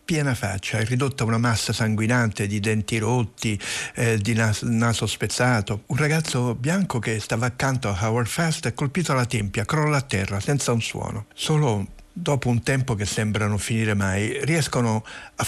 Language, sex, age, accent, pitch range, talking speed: Italian, male, 60-79, native, 110-140 Hz, 180 wpm